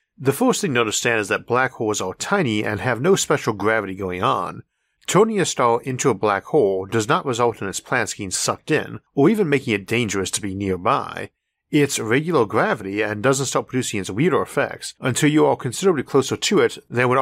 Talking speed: 215 wpm